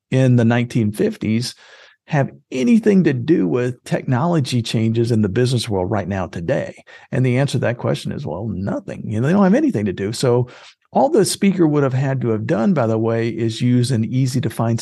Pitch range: 115-150 Hz